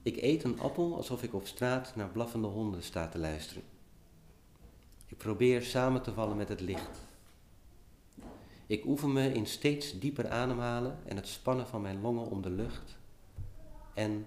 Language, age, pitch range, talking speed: Dutch, 50-69, 95-110 Hz, 165 wpm